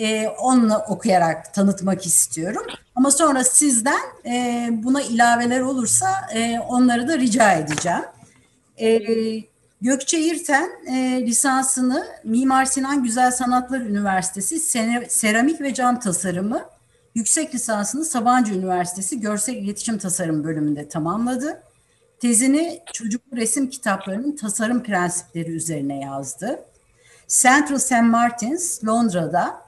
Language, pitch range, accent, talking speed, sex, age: Turkish, 180-255 Hz, native, 95 wpm, female, 50-69